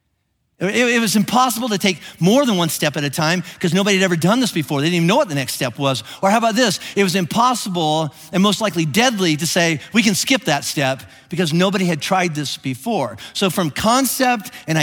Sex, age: male, 50-69